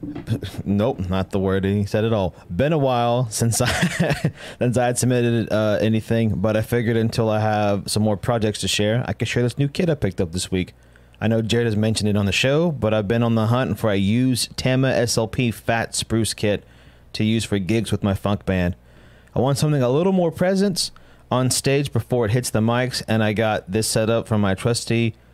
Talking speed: 225 wpm